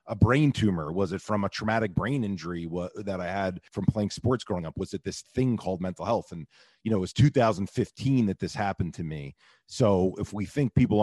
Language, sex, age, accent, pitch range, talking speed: English, male, 40-59, American, 90-105 Hz, 225 wpm